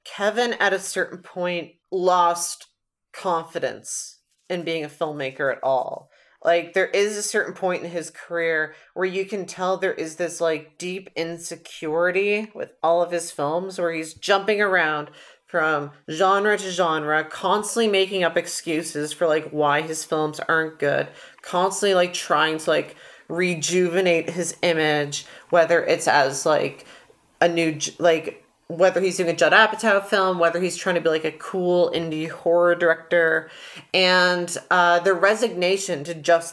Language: English